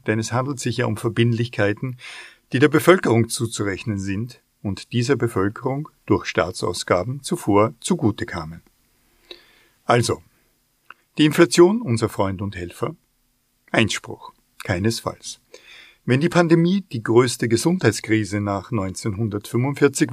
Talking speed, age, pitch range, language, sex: 110 wpm, 50-69, 105-130 Hz, German, male